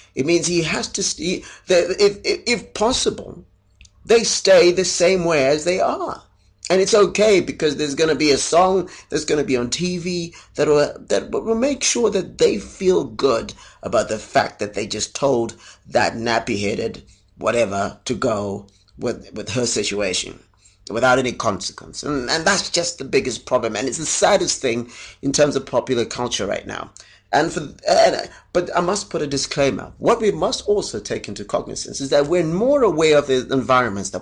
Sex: male